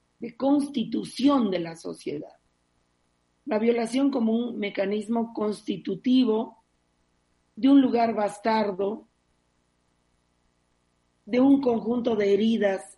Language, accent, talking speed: Spanish, Mexican, 90 wpm